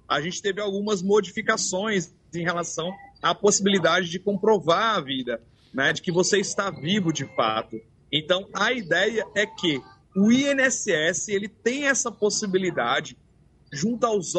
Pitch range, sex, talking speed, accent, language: 160-210 Hz, male, 140 wpm, Brazilian, Portuguese